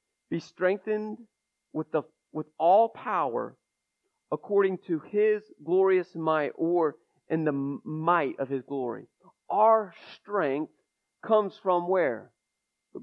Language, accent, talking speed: English, American, 110 wpm